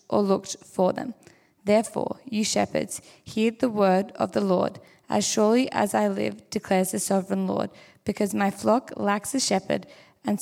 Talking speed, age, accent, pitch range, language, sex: 165 wpm, 20-39, Australian, 190-220 Hz, English, female